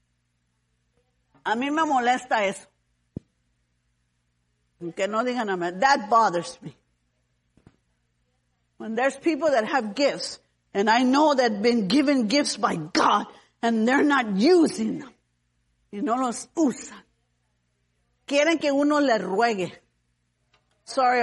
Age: 50-69